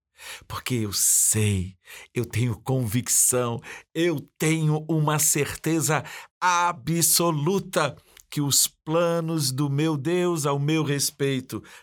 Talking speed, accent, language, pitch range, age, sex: 100 wpm, Brazilian, Portuguese, 120-175 Hz, 50-69, male